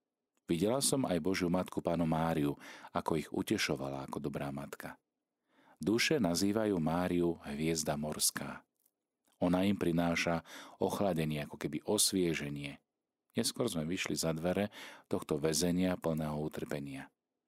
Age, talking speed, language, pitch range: 40-59, 115 wpm, Slovak, 75-90 Hz